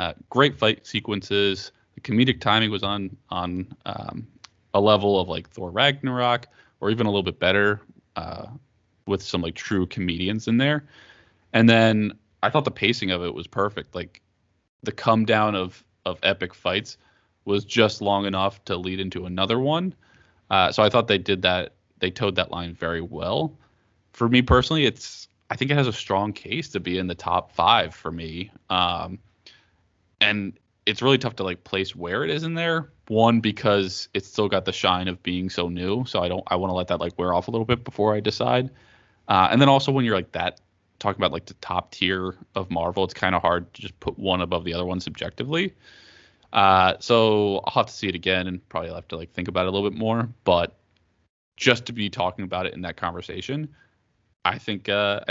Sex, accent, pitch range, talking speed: male, American, 90-115 Hz, 210 wpm